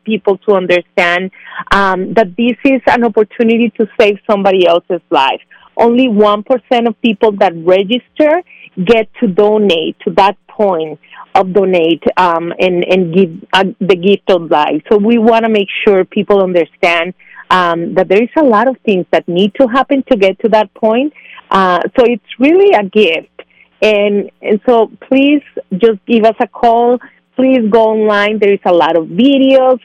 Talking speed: 175 wpm